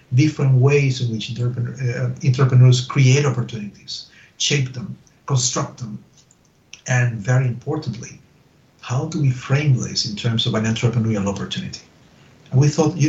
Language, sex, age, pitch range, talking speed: English, male, 50-69, 120-155 Hz, 135 wpm